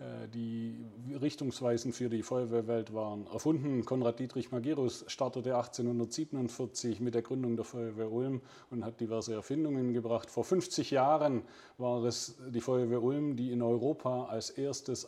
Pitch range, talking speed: 120-130 Hz, 140 wpm